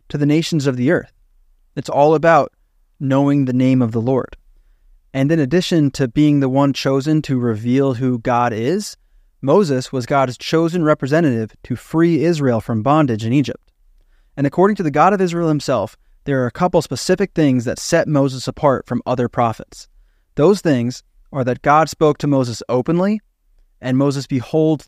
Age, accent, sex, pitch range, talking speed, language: 20-39, American, male, 125-160 Hz, 175 wpm, English